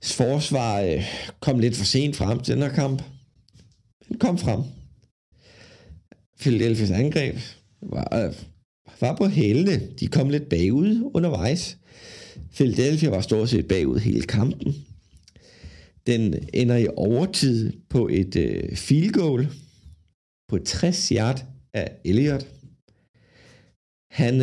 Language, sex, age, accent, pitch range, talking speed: Danish, male, 50-69, native, 105-135 Hz, 115 wpm